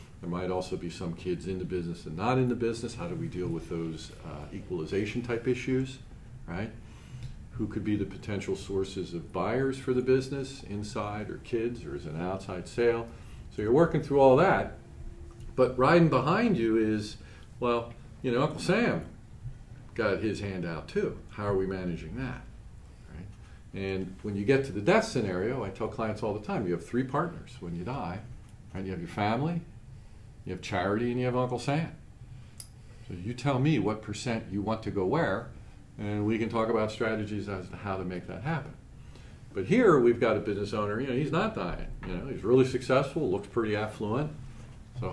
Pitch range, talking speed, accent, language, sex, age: 95-125 Hz, 200 wpm, American, English, male, 50-69